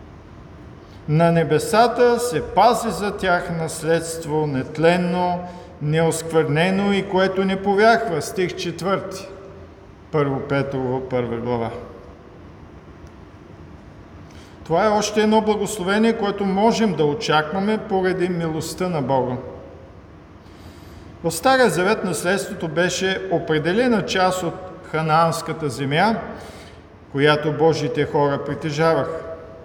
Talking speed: 95 wpm